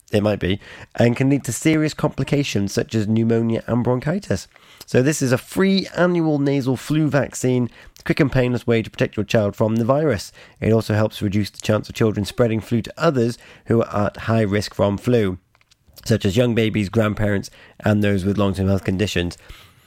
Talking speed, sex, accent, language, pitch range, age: 195 wpm, male, British, English, 105-140 Hz, 30-49